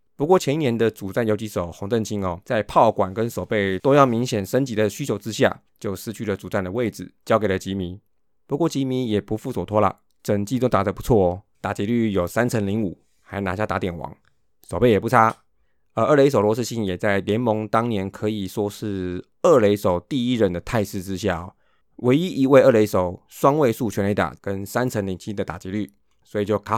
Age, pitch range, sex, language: 20-39, 95-115 Hz, male, Chinese